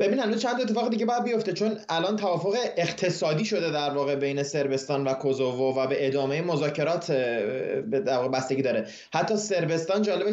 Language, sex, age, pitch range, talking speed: Persian, male, 20-39, 130-160 Hz, 170 wpm